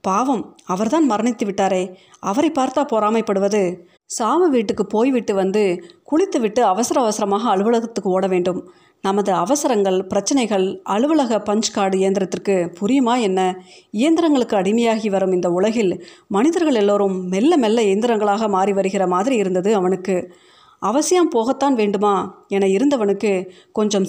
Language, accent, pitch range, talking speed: Tamil, native, 190-245 Hz, 110 wpm